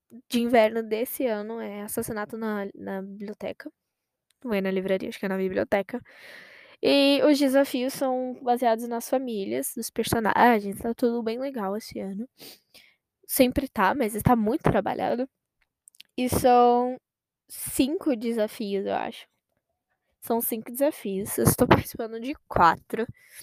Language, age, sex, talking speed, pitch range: Portuguese, 10-29, female, 140 wpm, 215-275 Hz